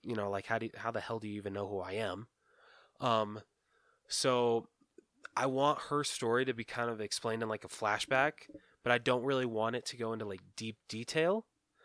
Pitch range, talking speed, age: 105-125 Hz, 215 wpm, 20-39